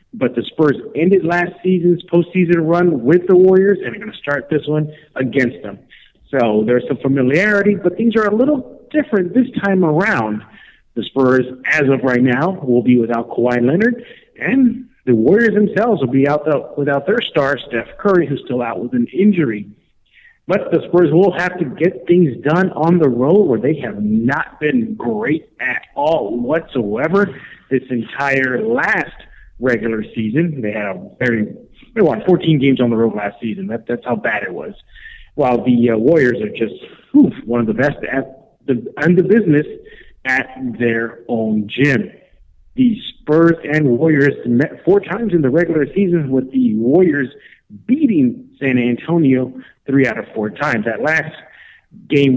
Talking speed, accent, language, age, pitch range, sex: 170 wpm, American, English, 50-69, 125-190 Hz, male